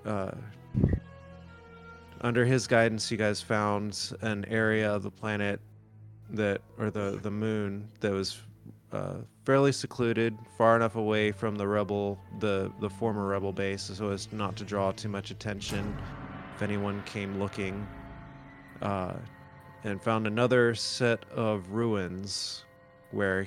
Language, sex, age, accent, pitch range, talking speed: English, male, 30-49, American, 100-115 Hz, 135 wpm